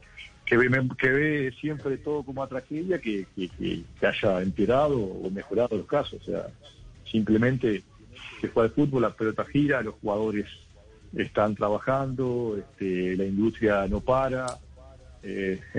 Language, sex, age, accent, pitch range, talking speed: Spanish, male, 40-59, Argentinian, 100-125 Hz, 145 wpm